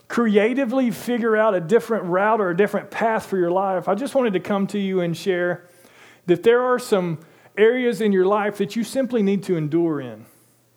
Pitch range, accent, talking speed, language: 160-210 Hz, American, 205 wpm, English